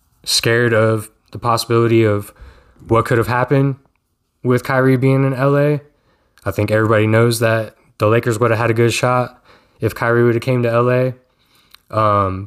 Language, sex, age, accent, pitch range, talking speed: English, male, 10-29, American, 105-120 Hz, 170 wpm